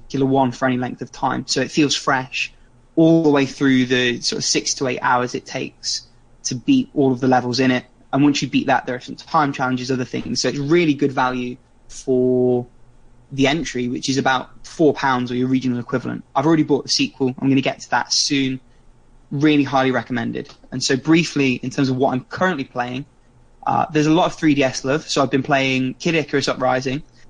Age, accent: 20-39, British